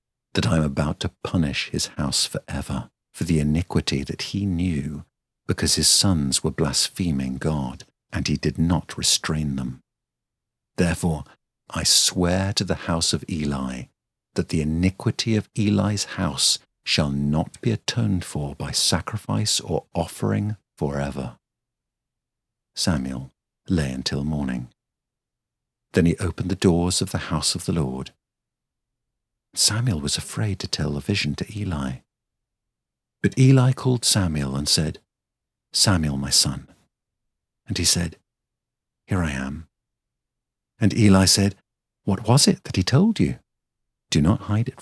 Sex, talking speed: male, 140 wpm